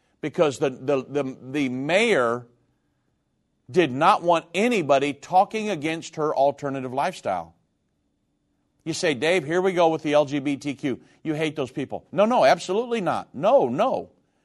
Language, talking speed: English, 140 wpm